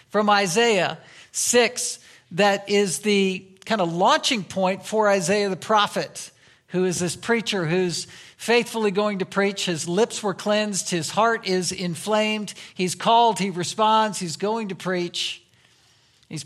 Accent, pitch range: American, 180-210 Hz